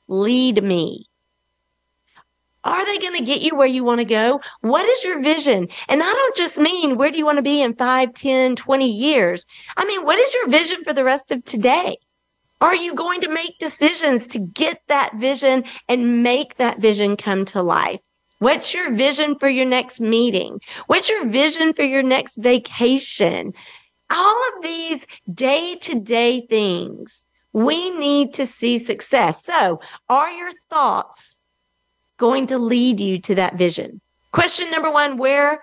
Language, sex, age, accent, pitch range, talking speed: English, female, 40-59, American, 225-310 Hz, 170 wpm